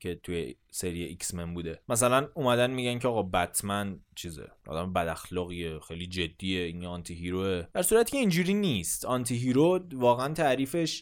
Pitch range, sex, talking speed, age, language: 105-145 Hz, male, 160 wpm, 20-39, Persian